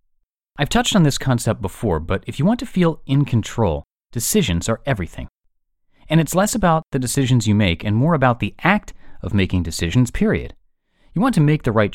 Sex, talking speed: male, 200 wpm